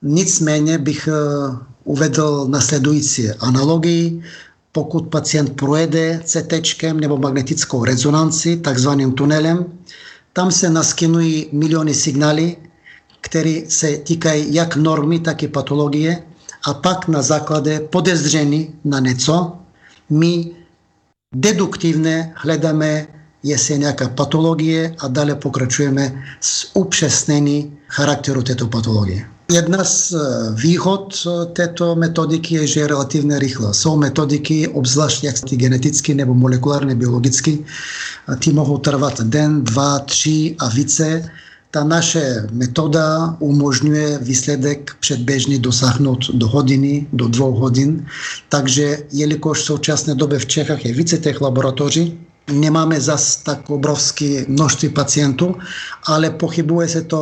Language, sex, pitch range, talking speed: Czech, male, 140-160 Hz, 110 wpm